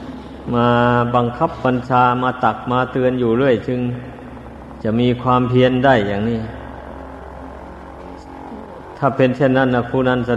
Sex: male